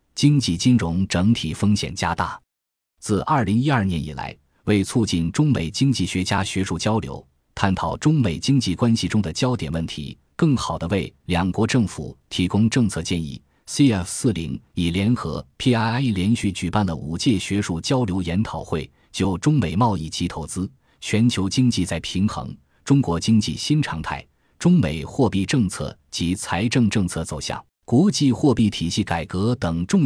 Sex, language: male, Chinese